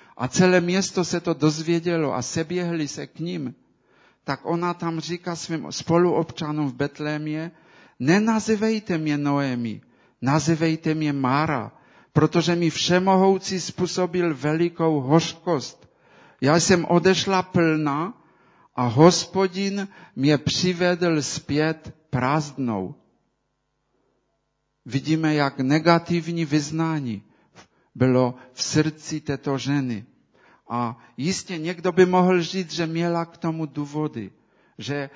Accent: Polish